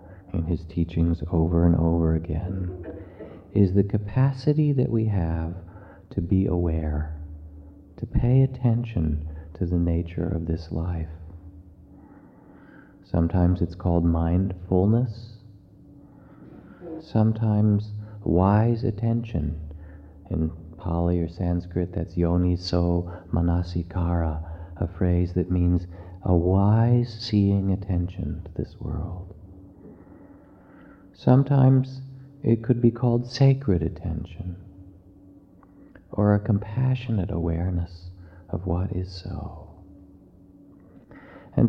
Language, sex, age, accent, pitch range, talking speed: English, male, 40-59, American, 85-105 Hz, 95 wpm